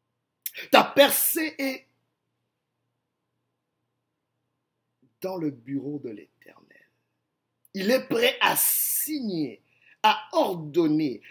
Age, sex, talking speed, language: 50-69, male, 80 wpm, French